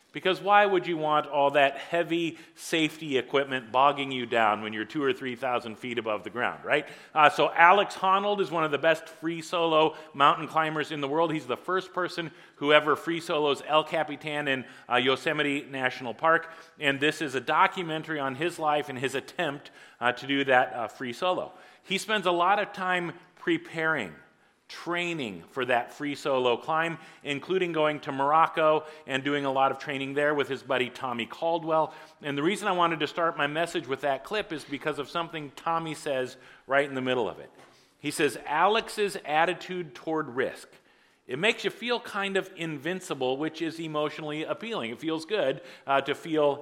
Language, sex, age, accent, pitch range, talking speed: English, male, 40-59, American, 140-170 Hz, 190 wpm